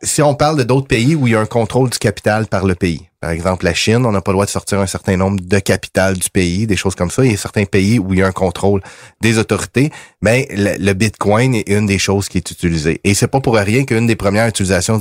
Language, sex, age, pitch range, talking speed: French, male, 30-49, 90-110 Hz, 285 wpm